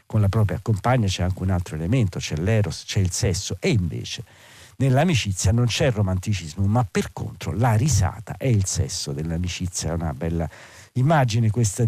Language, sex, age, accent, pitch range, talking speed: Italian, male, 50-69, native, 90-115 Hz, 175 wpm